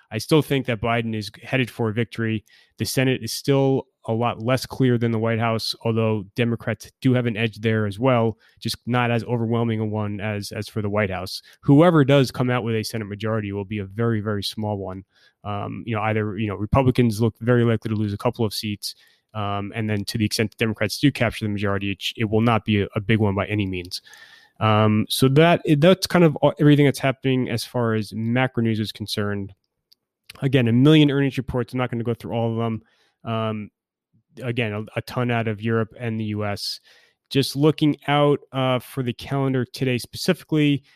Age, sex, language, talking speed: 20-39, male, English, 215 wpm